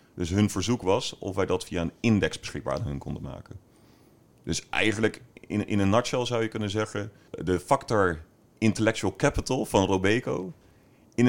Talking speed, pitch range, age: 165 wpm, 90-115 Hz, 40-59